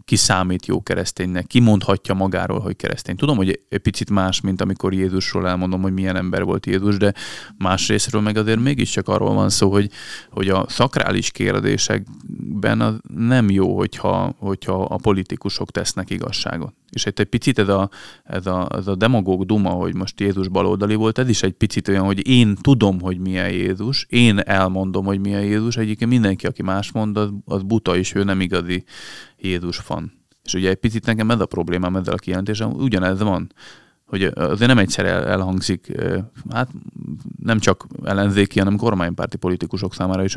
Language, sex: Hungarian, male